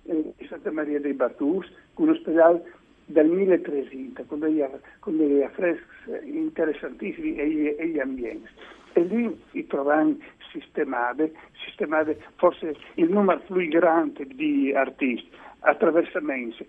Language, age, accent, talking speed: Italian, 60-79, native, 120 wpm